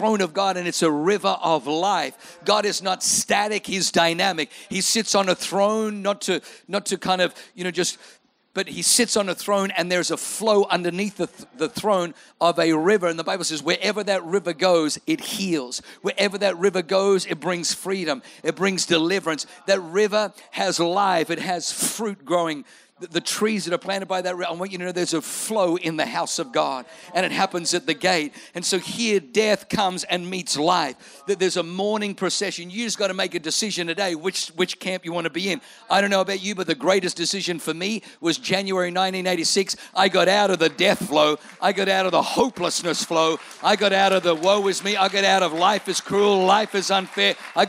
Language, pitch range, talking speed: English, 175-200 Hz, 220 wpm